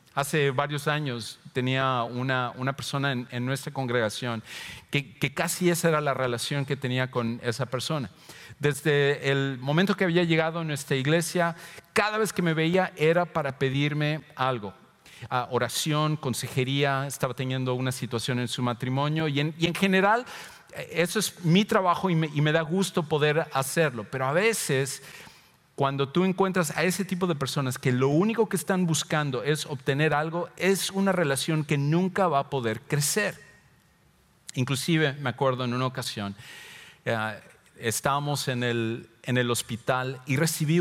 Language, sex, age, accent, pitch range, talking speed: English, male, 40-59, Mexican, 130-170 Hz, 165 wpm